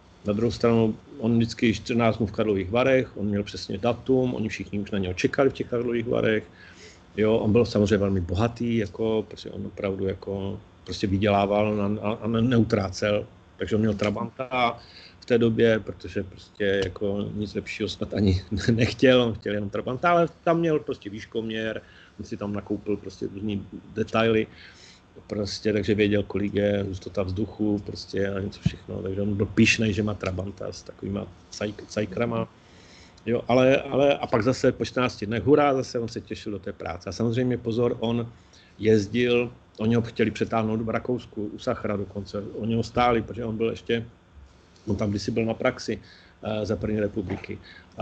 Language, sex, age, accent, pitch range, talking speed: Czech, male, 40-59, native, 100-115 Hz, 170 wpm